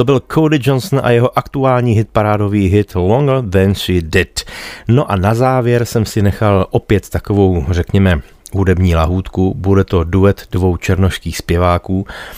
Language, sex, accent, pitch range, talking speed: Czech, male, native, 95-110 Hz, 155 wpm